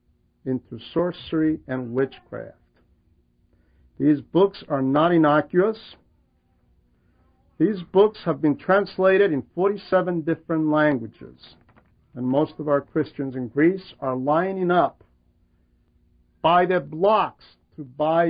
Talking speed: 110 wpm